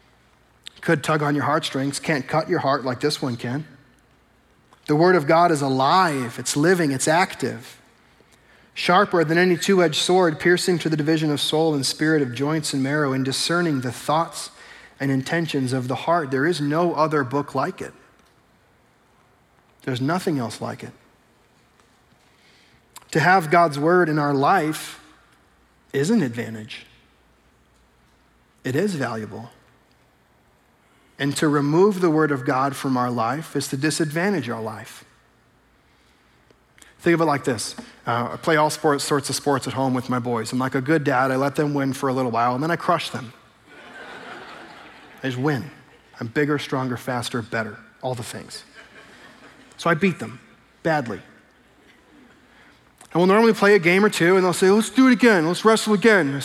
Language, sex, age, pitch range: English, male, 40-59, 130-170 Hz